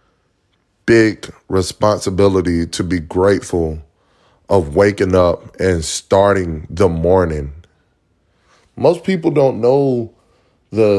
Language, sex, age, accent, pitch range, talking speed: English, male, 20-39, American, 90-110 Hz, 85 wpm